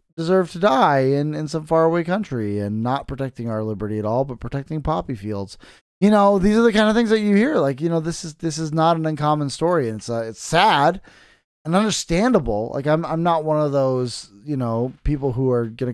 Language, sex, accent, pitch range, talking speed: English, male, American, 120-175 Hz, 230 wpm